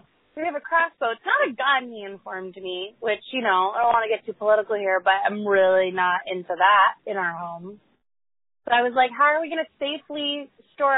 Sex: female